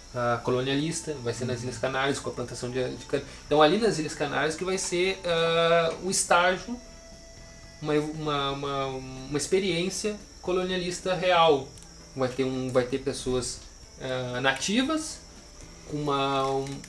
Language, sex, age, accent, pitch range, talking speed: Portuguese, male, 20-39, Brazilian, 130-165 Hz, 150 wpm